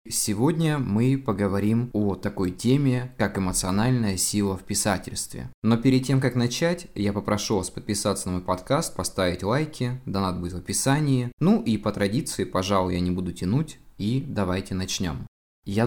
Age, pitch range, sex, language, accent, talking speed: 20-39, 100-130 Hz, male, Russian, native, 160 wpm